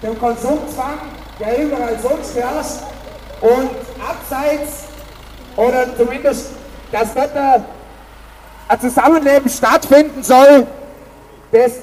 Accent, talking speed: German, 90 wpm